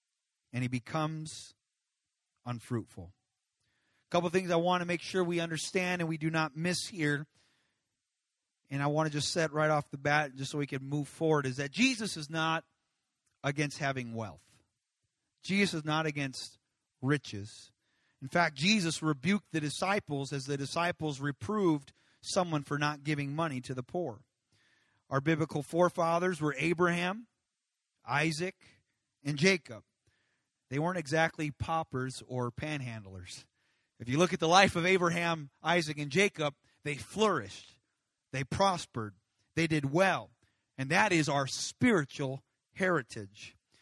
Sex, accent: male, American